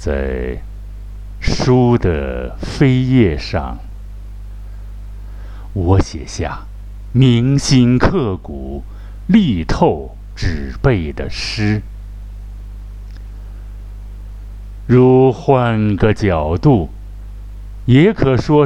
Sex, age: male, 60-79